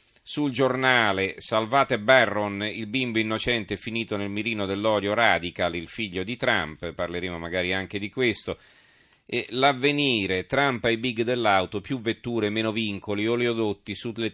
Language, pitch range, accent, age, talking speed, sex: Italian, 95-115 Hz, native, 40-59, 140 wpm, male